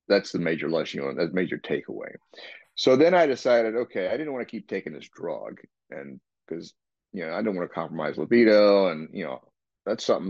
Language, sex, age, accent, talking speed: English, male, 40-59, American, 215 wpm